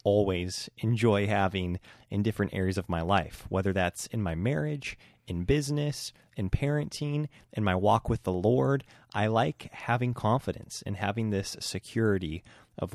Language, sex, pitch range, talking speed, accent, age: English, male, 95-115 Hz, 155 wpm, American, 20-39